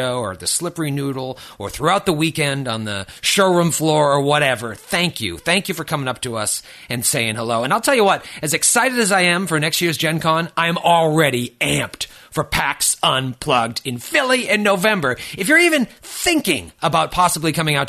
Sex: male